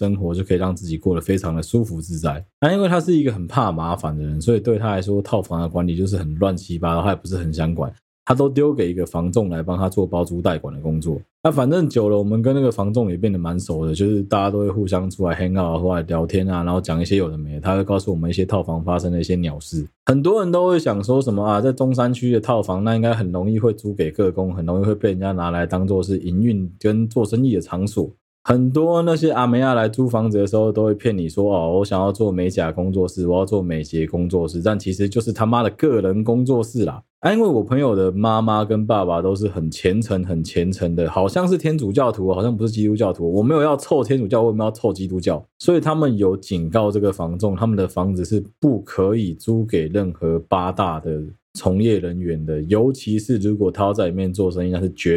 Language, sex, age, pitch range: Chinese, male, 20-39, 90-115 Hz